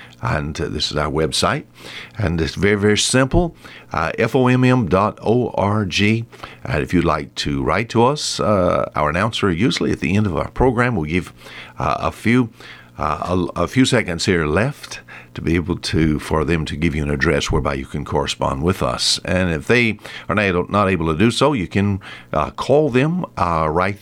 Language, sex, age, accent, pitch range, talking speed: English, male, 60-79, American, 80-115 Hz, 200 wpm